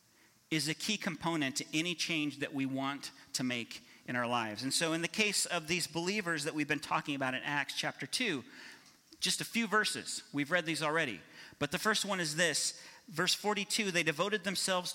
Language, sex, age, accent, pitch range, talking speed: English, male, 40-59, American, 135-180 Hz, 205 wpm